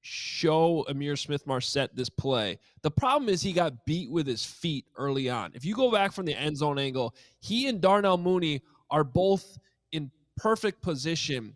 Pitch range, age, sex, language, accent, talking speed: 140-195 Hz, 20-39, male, English, American, 180 wpm